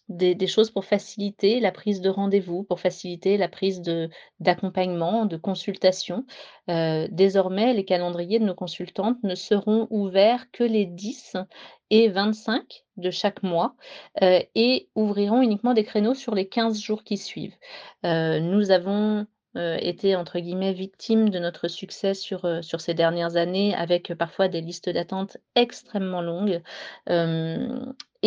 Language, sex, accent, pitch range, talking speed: French, female, French, 180-215 Hz, 150 wpm